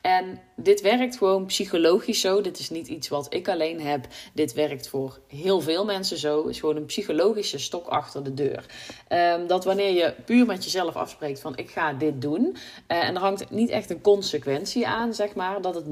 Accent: Dutch